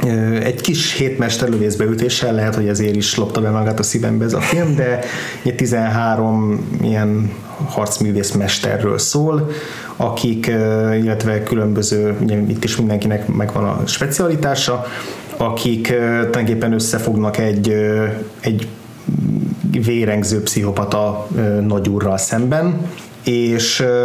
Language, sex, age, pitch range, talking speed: Hungarian, male, 20-39, 110-130 Hz, 105 wpm